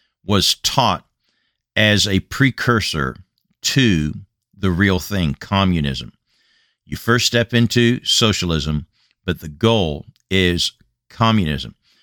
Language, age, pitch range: English, 50-69, 85-110 Hz